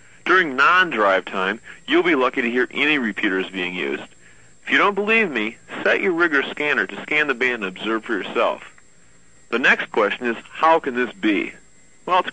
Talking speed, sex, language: 190 wpm, male, English